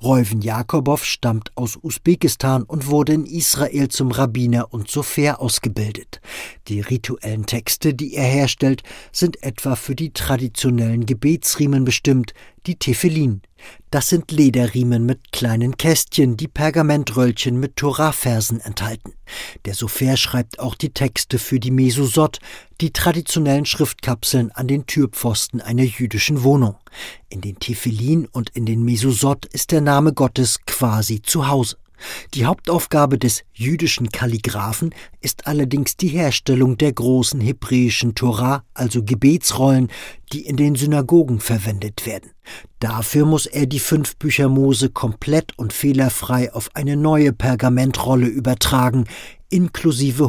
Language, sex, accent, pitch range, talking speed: German, male, German, 120-145 Hz, 130 wpm